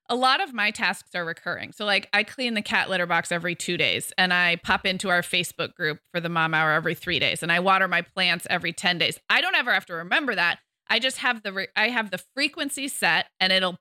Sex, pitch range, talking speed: female, 180-240 Hz, 255 wpm